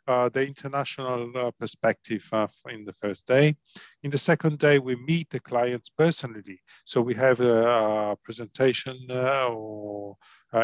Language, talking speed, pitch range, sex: English, 165 wpm, 110-135 Hz, male